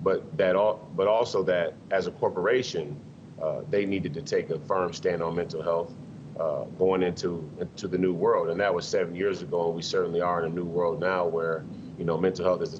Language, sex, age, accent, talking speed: English, male, 30-49, American, 230 wpm